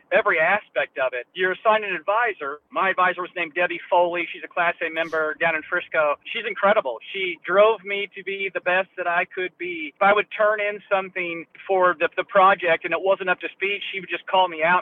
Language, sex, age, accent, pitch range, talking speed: English, male, 40-59, American, 160-195 Hz, 230 wpm